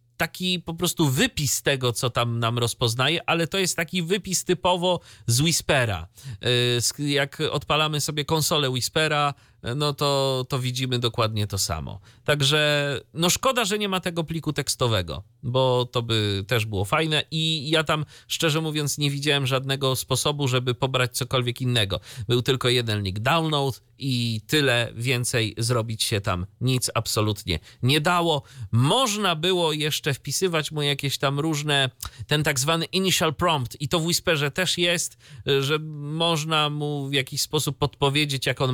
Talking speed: 155 wpm